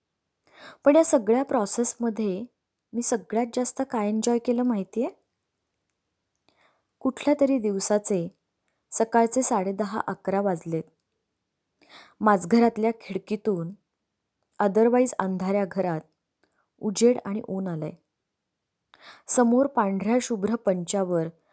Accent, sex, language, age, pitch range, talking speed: native, female, Marathi, 20-39, 185-230 Hz, 75 wpm